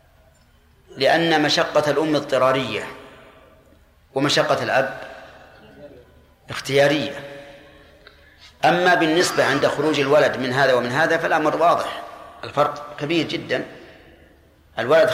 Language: Arabic